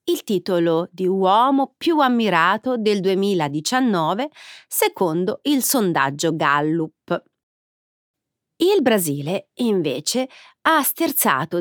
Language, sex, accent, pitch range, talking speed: Italian, female, native, 170-260 Hz, 90 wpm